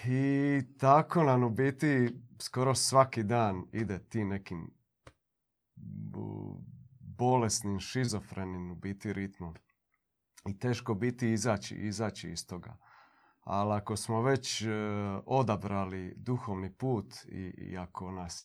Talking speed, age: 115 wpm, 40-59